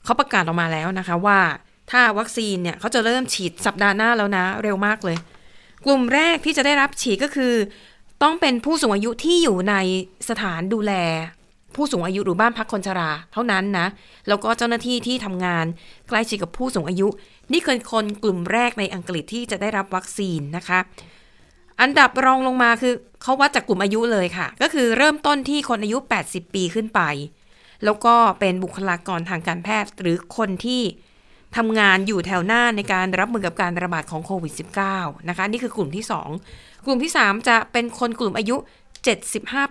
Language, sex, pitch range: Thai, female, 185-235 Hz